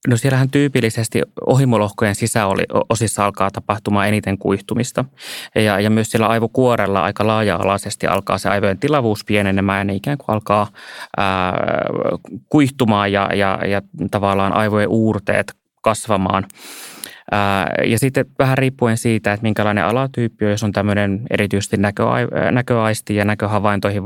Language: Finnish